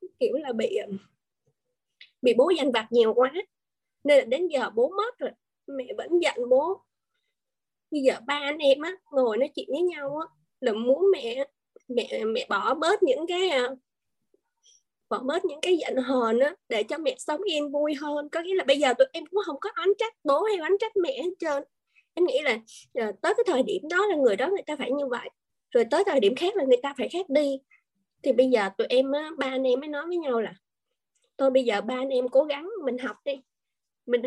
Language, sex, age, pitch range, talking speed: Vietnamese, female, 20-39, 250-385 Hz, 220 wpm